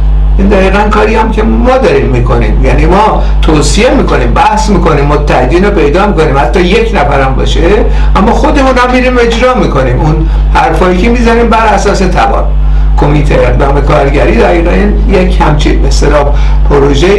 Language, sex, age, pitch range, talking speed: Persian, male, 60-79, 150-205 Hz, 155 wpm